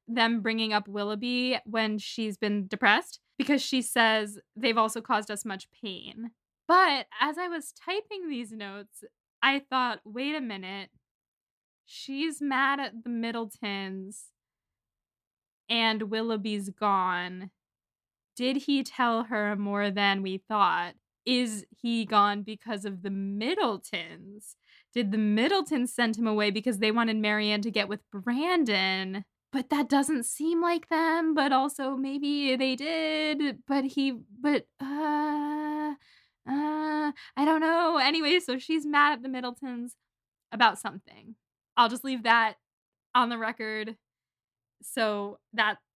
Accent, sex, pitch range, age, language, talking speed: American, female, 210-275 Hz, 10-29, English, 135 wpm